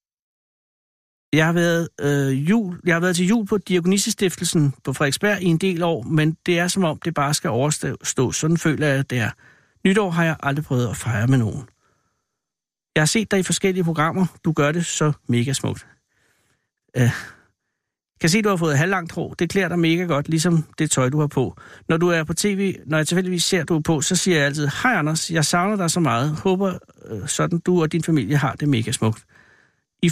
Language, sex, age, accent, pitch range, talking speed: Danish, male, 60-79, native, 145-180 Hz, 225 wpm